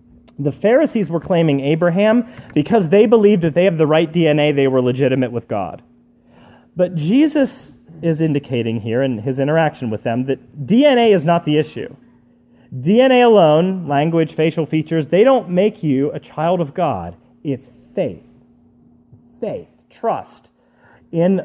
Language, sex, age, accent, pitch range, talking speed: English, male, 30-49, American, 125-185 Hz, 150 wpm